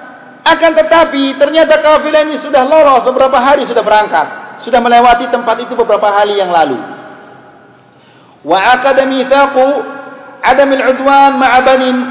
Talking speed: 130 wpm